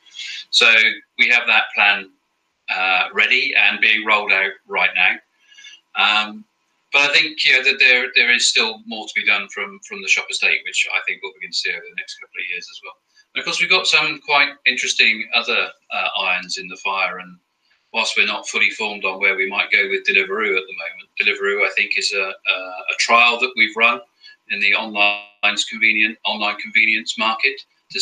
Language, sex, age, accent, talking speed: English, male, 40-59, British, 210 wpm